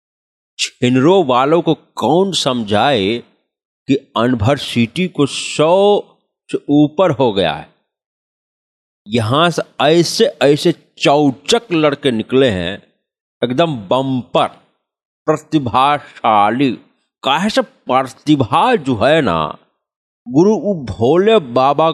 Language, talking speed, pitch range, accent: Hindi, 90 wpm, 120-165 Hz, native